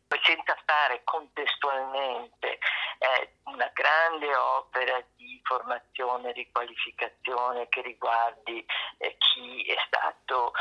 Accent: native